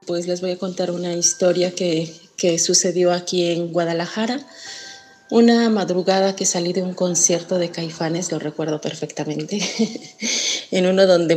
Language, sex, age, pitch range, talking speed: Spanish, female, 30-49, 165-190 Hz, 155 wpm